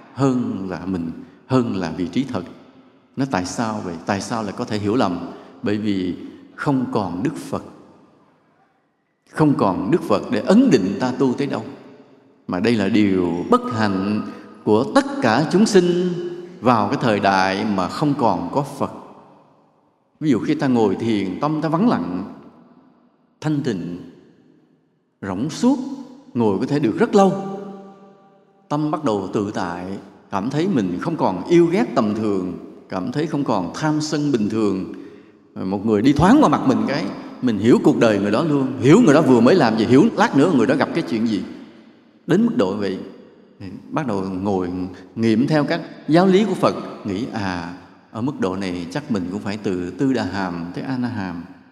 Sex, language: male, Vietnamese